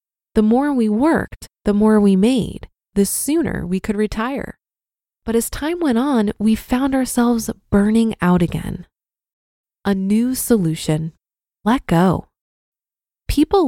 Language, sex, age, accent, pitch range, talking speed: English, female, 20-39, American, 190-240 Hz, 130 wpm